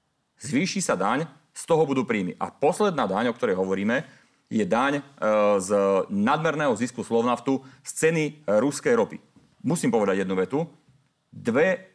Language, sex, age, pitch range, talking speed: Slovak, male, 40-59, 130-195 Hz, 140 wpm